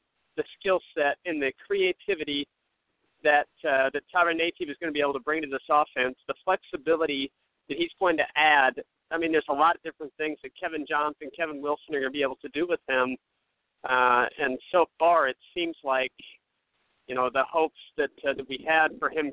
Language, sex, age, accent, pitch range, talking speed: English, male, 40-59, American, 140-170 Hz, 210 wpm